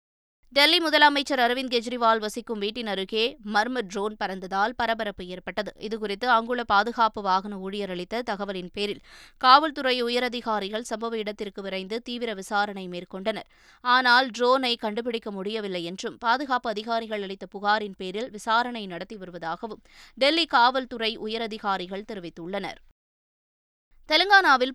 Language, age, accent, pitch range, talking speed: Tamil, 20-39, native, 195-245 Hz, 110 wpm